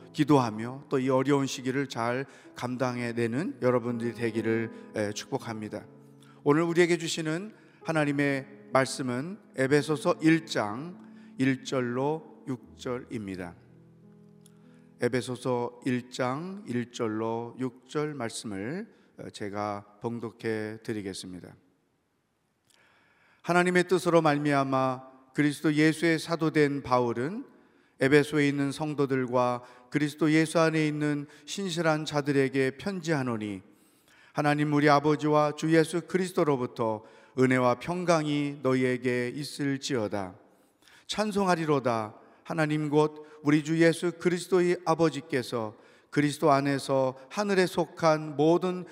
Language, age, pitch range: Korean, 40-59, 125-160 Hz